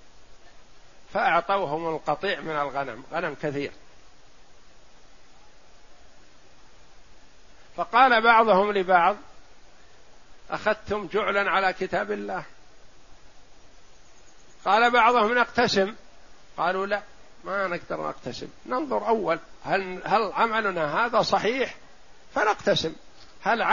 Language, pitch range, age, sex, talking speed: Arabic, 155-205 Hz, 50-69, male, 80 wpm